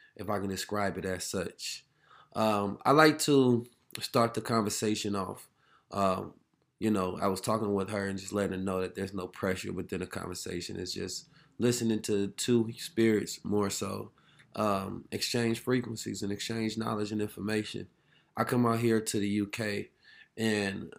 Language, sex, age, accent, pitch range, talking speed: English, male, 20-39, American, 100-115 Hz, 170 wpm